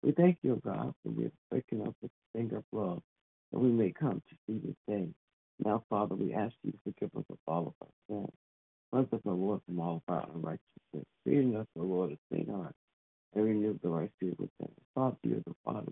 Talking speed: 230 wpm